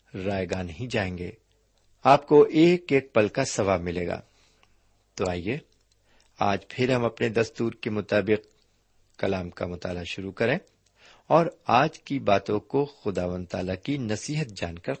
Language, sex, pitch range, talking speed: Urdu, male, 95-125 Hz, 150 wpm